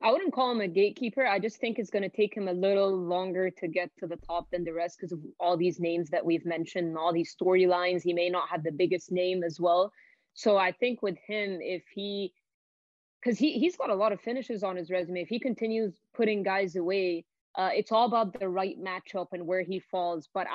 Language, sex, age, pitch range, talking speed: English, female, 20-39, 185-210 Hz, 240 wpm